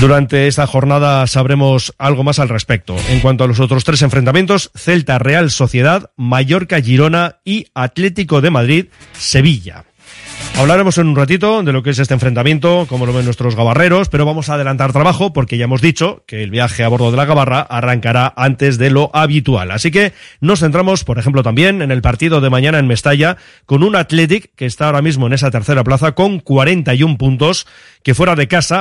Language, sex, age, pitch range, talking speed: Spanish, male, 30-49, 125-155 Hz, 185 wpm